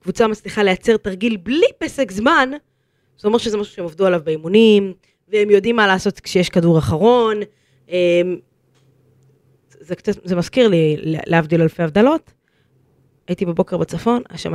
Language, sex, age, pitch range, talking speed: Hebrew, female, 20-39, 160-240 Hz, 145 wpm